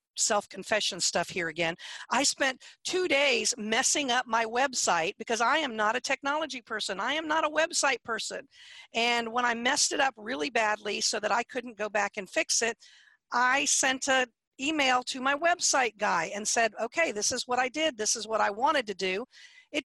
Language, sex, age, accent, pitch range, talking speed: English, female, 50-69, American, 225-285 Hz, 200 wpm